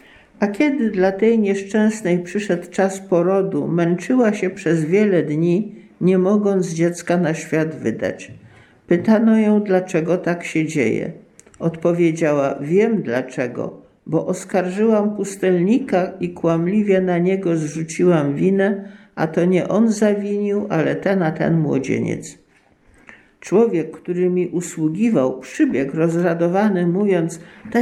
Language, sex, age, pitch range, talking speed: Polish, male, 50-69, 165-210 Hz, 120 wpm